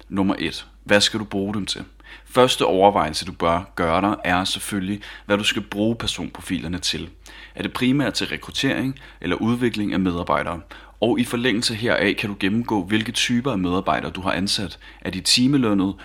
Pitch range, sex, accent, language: 95-110 Hz, male, native, Danish